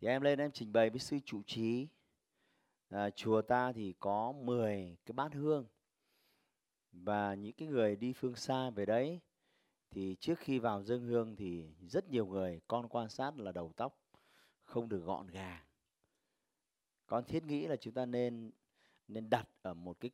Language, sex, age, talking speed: Vietnamese, male, 30-49, 175 wpm